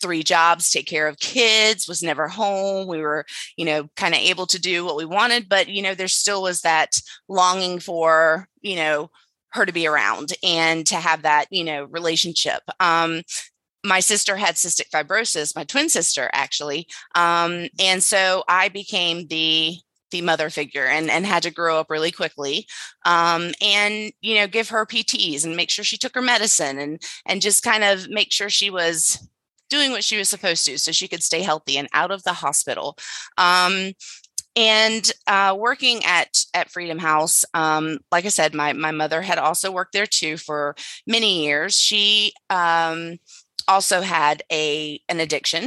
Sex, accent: female, American